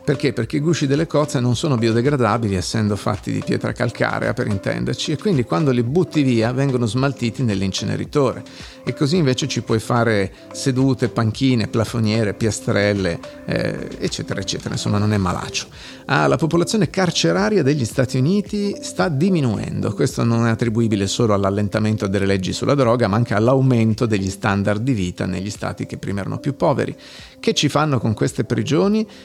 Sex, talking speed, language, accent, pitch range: male, 165 wpm, Italian, native, 110-145 Hz